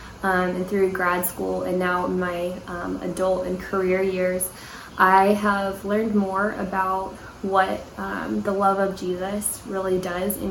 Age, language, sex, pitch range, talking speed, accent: 10-29, English, female, 180-200 Hz, 155 wpm, American